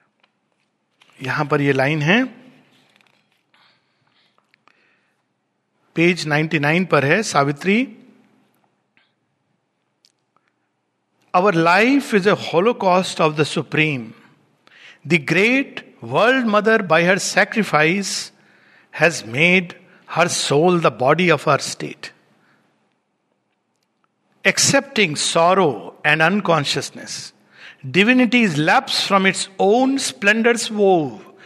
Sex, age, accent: male, 60-79, native